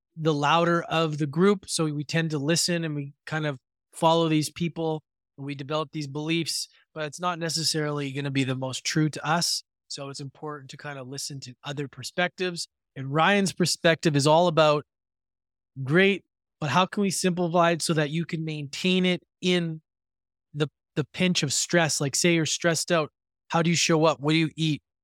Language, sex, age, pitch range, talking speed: English, male, 20-39, 135-170 Hz, 200 wpm